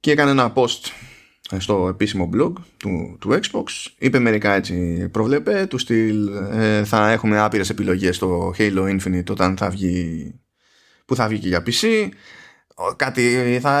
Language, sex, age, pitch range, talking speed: Greek, male, 20-39, 100-155 Hz, 150 wpm